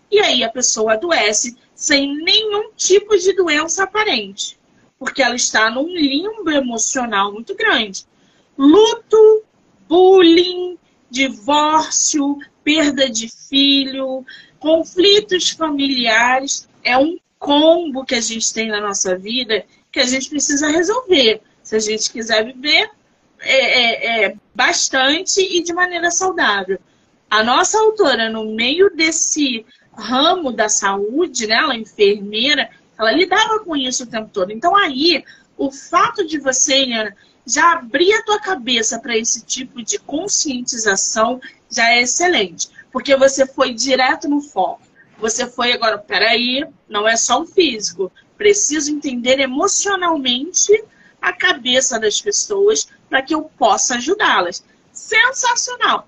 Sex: female